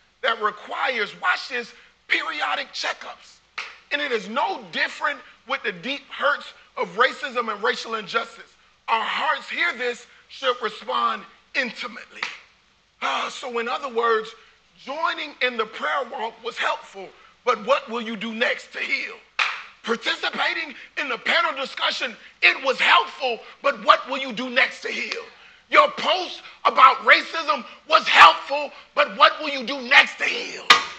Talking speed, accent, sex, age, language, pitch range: 150 wpm, American, male, 40-59, English, 225-280 Hz